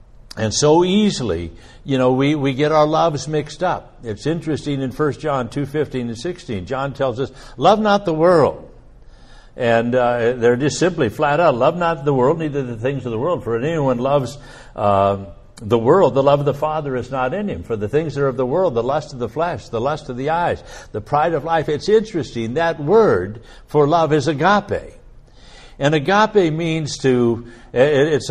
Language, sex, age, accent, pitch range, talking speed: English, male, 60-79, American, 125-165 Hz, 200 wpm